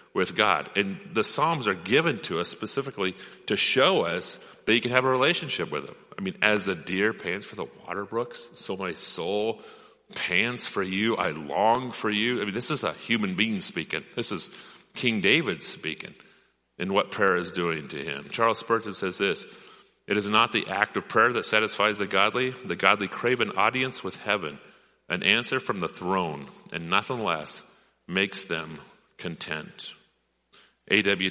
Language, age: English, 40-59